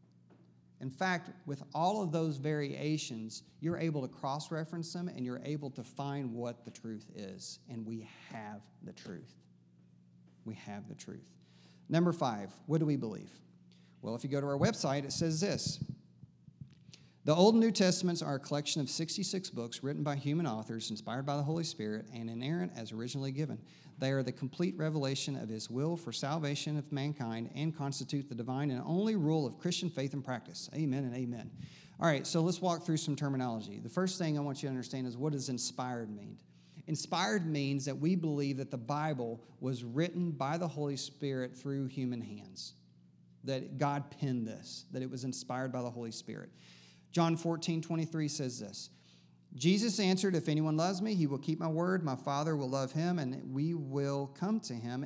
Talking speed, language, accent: 190 wpm, English, American